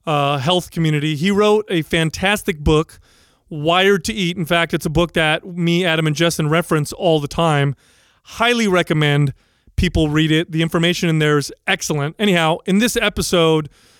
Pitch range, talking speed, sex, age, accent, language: 155-180 Hz, 170 wpm, male, 30-49, American, English